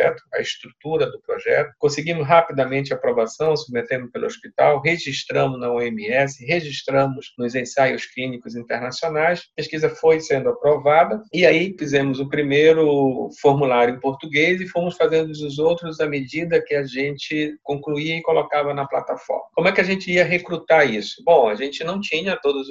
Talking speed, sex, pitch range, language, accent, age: 160 wpm, male, 135-170 Hz, Portuguese, Brazilian, 40-59